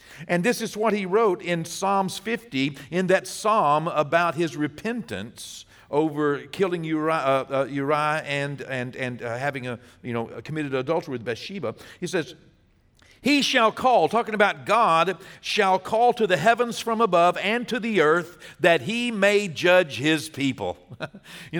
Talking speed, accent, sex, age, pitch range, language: 140 wpm, American, male, 50-69, 145-215 Hz, English